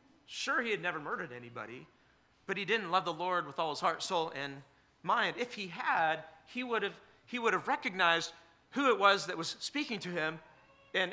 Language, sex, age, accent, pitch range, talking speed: English, male, 40-59, American, 155-195 Hz, 195 wpm